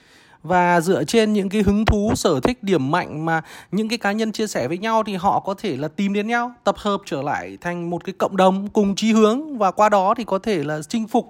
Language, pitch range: Vietnamese, 170-215 Hz